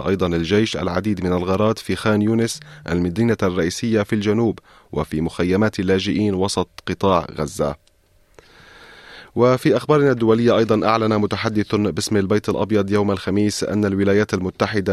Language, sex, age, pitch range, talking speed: Arabic, male, 30-49, 95-105 Hz, 130 wpm